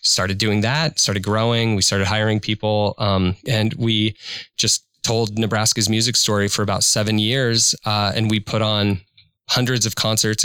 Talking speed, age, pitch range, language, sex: 165 wpm, 20-39, 105-125 Hz, English, male